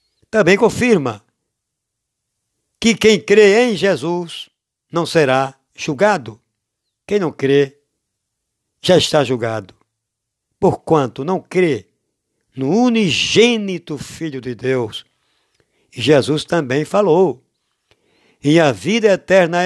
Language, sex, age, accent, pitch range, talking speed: Portuguese, male, 60-79, Brazilian, 125-190 Hz, 95 wpm